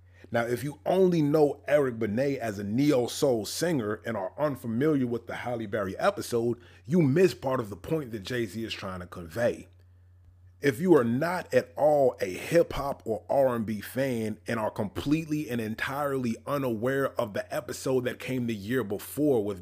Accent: American